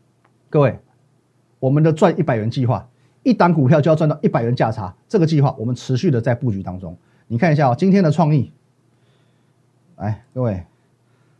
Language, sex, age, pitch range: Chinese, male, 30-49, 120-160 Hz